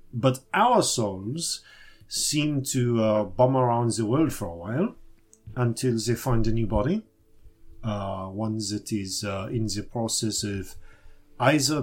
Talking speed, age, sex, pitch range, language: 145 wpm, 40-59, male, 105-150 Hz, English